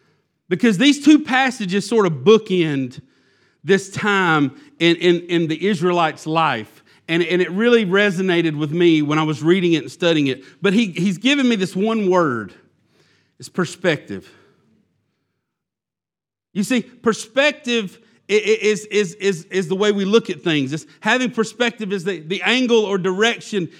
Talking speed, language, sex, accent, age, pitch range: 145 wpm, English, male, American, 40-59, 160-210 Hz